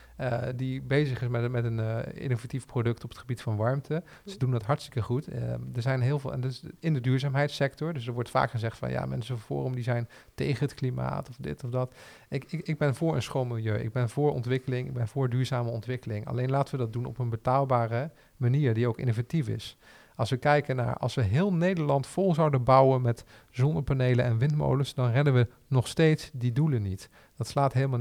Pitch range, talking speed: 120-145 Hz, 225 wpm